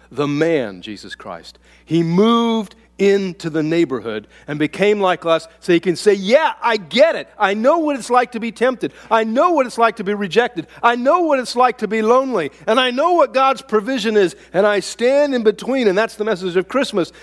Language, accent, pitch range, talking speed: English, American, 140-235 Hz, 220 wpm